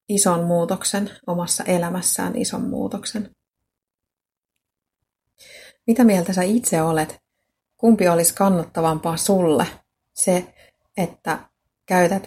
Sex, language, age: female, Finnish, 30-49